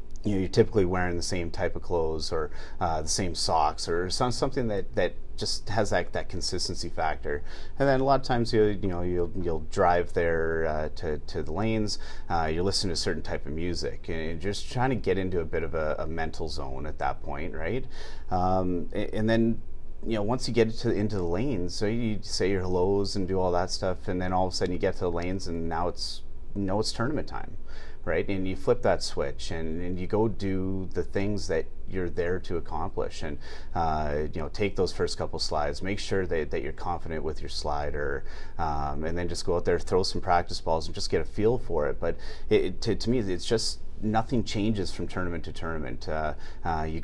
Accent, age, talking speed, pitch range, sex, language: American, 30-49, 235 wpm, 80-100 Hz, male, English